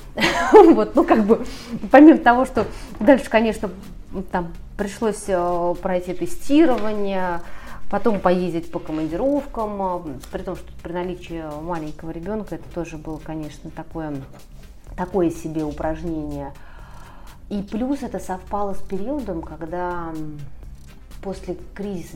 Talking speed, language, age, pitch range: 110 wpm, Russian, 30-49, 165-200 Hz